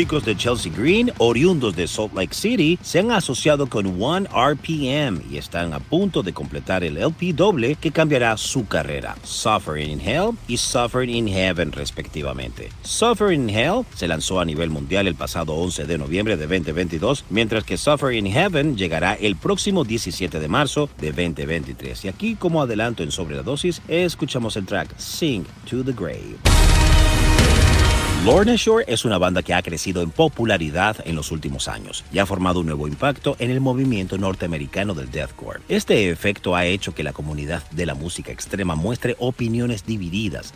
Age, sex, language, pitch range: 50-69, male, Spanish, 85-130 Hz